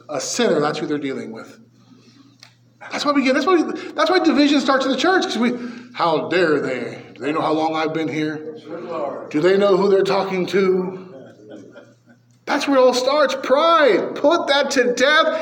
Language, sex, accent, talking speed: English, male, American, 190 wpm